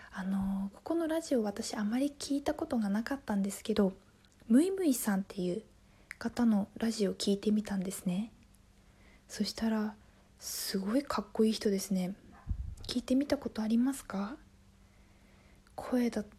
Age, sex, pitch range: 20-39, female, 190-240 Hz